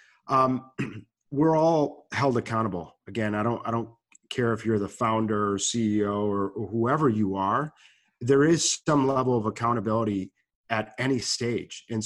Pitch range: 105-130 Hz